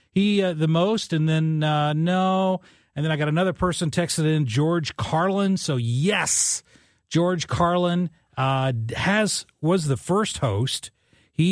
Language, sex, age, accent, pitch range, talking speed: English, male, 40-59, American, 130-185 Hz, 150 wpm